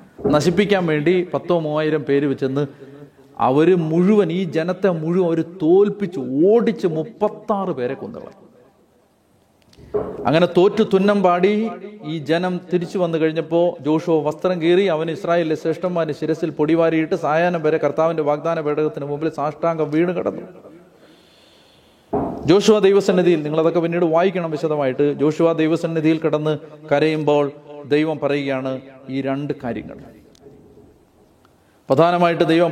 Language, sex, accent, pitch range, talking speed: Malayalam, male, native, 140-170 Hz, 110 wpm